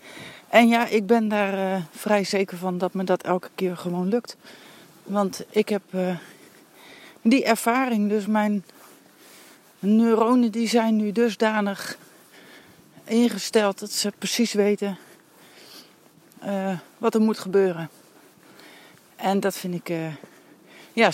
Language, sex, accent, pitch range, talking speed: Dutch, female, Dutch, 190-220 Hz, 125 wpm